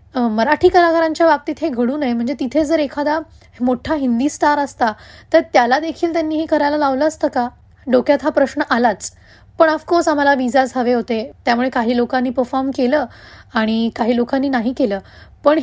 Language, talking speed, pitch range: Marathi, 170 wpm, 250-305 Hz